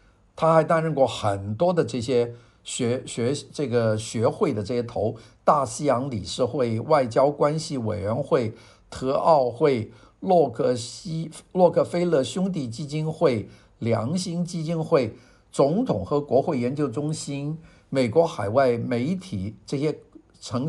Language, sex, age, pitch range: Chinese, male, 50-69, 110-160 Hz